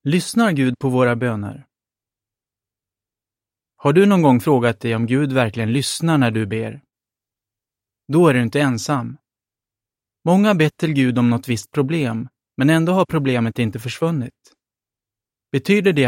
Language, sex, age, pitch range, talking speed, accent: Swedish, male, 30-49, 115-150 Hz, 145 wpm, native